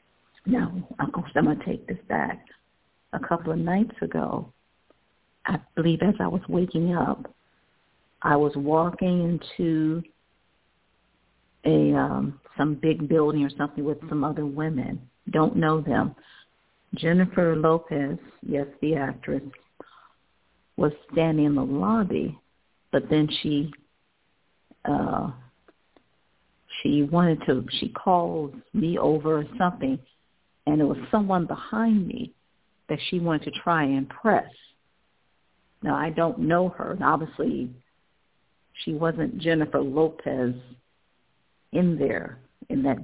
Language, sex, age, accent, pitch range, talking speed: English, female, 50-69, American, 145-170 Hz, 125 wpm